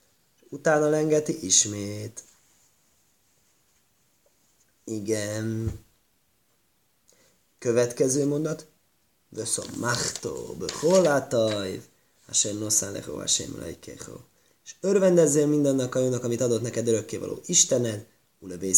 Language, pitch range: Hungarian, 115-160 Hz